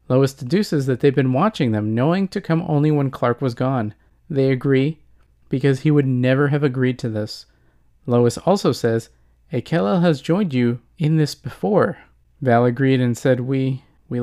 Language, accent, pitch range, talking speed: English, American, 120-160 Hz, 175 wpm